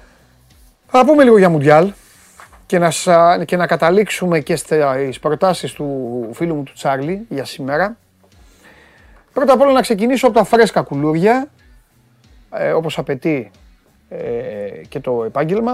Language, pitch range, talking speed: Greek, 135-220 Hz, 135 wpm